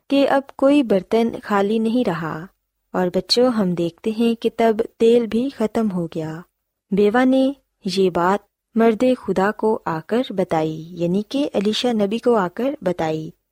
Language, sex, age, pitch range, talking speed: Urdu, female, 20-39, 180-245 Hz, 165 wpm